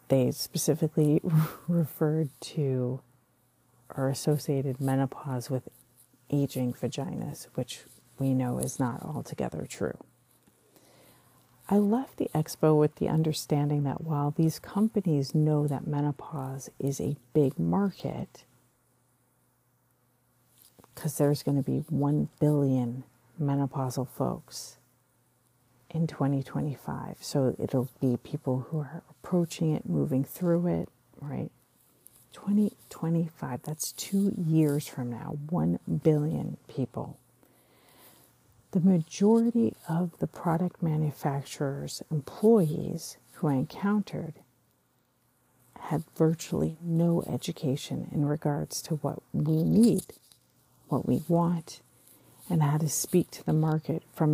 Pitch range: 130-165 Hz